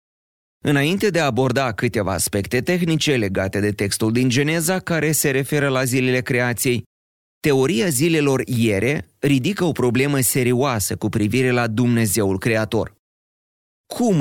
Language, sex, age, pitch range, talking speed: Romanian, male, 30-49, 105-135 Hz, 130 wpm